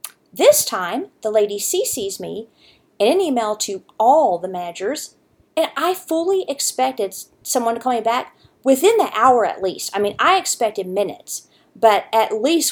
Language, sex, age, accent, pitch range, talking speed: English, female, 40-59, American, 205-335 Hz, 165 wpm